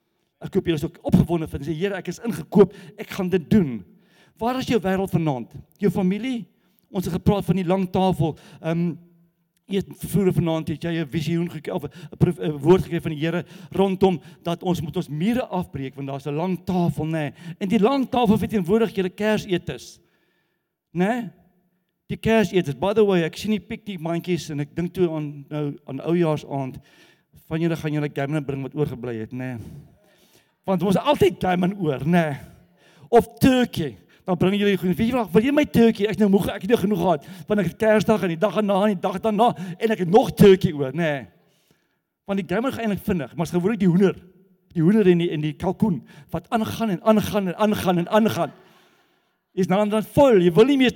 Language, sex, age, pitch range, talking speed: English, male, 50-69, 160-200 Hz, 210 wpm